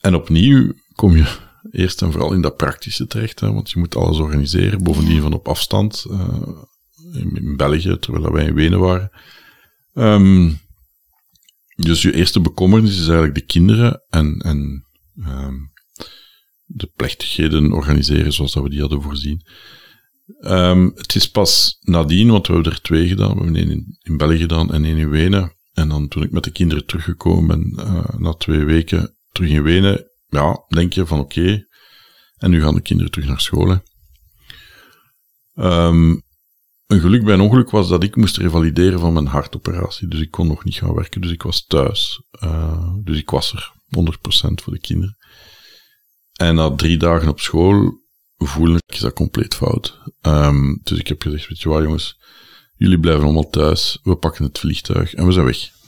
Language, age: Dutch, 50-69